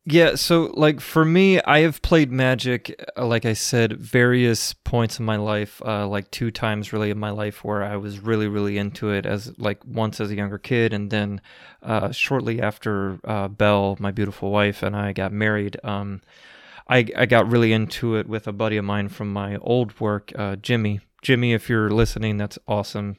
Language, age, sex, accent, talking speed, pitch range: English, 30-49, male, American, 200 wpm, 100-115 Hz